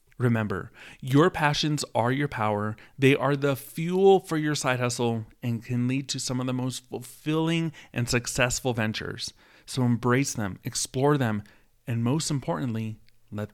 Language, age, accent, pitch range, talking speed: English, 30-49, American, 115-145 Hz, 155 wpm